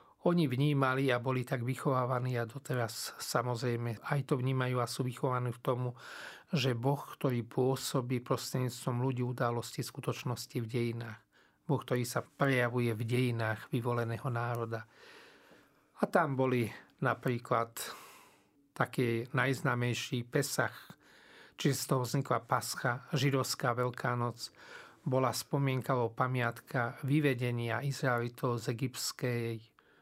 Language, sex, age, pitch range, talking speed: Slovak, male, 40-59, 120-135 Hz, 115 wpm